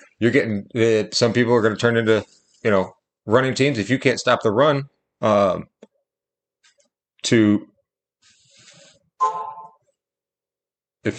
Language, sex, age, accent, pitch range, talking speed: English, male, 30-49, American, 100-125 Hz, 125 wpm